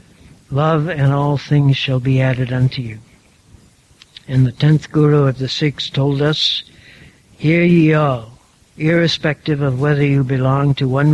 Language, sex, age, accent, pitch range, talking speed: English, male, 60-79, American, 130-150 Hz, 150 wpm